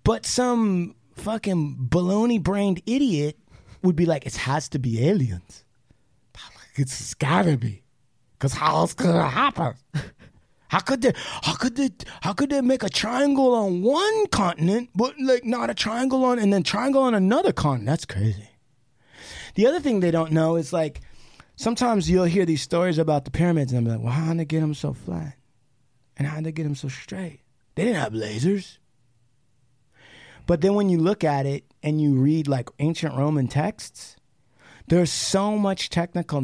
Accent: American